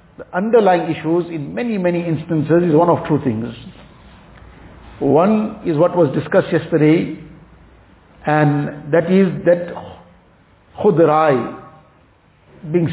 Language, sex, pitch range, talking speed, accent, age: English, male, 155-185 Hz, 110 wpm, Indian, 50-69